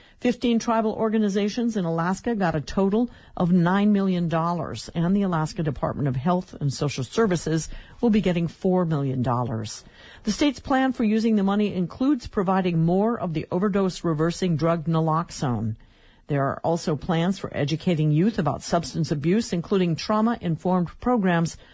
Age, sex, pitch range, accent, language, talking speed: 50-69, female, 150-205 Hz, American, English, 145 wpm